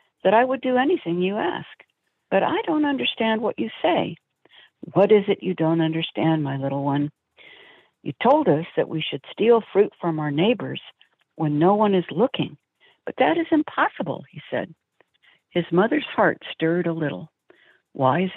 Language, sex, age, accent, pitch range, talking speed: English, female, 60-79, American, 155-215 Hz, 175 wpm